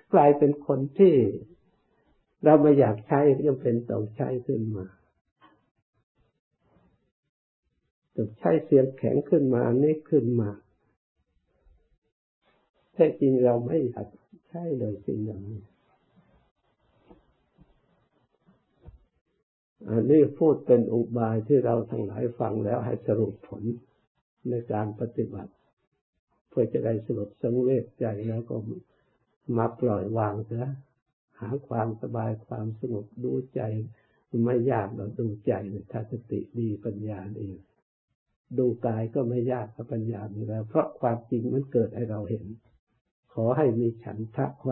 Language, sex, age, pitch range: Thai, male, 60-79, 105-130 Hz